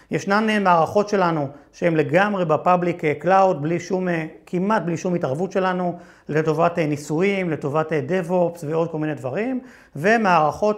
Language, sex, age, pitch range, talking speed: Hebrew, male, 40-59, 155-195 Hz, 130 wpm